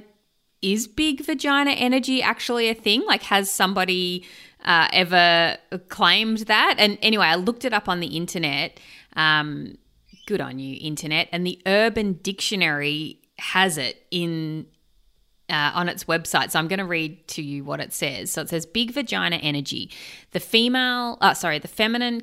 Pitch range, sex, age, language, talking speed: 155-220 Hz, female, 30-49, English, 165 wpm